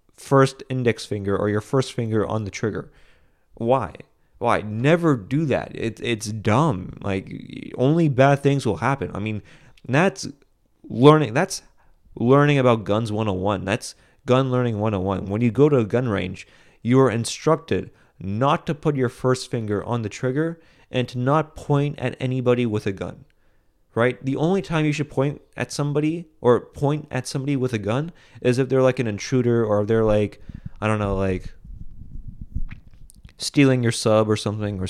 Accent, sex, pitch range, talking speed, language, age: American, male, 105-140 Hz, 170 wpm, English, 30-49